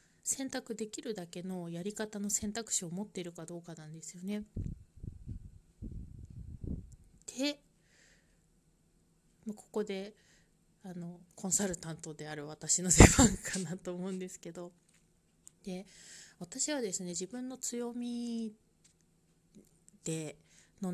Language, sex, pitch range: Japanese, female, 170-215 Hz